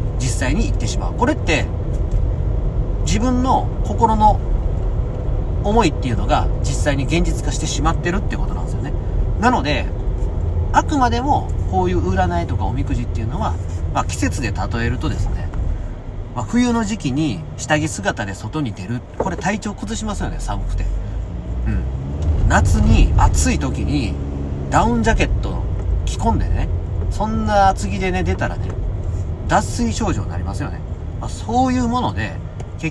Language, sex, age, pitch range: Japanese, male, 40-59, 85-110 Hz